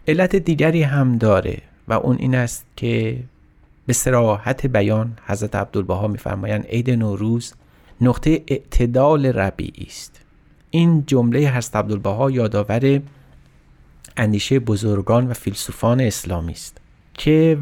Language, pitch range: Persian, 100-130 Hz